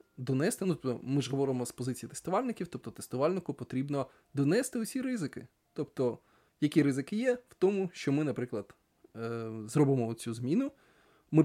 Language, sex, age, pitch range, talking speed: Ukrainian, male, 20-39, 125-155 Hz, 140 wpm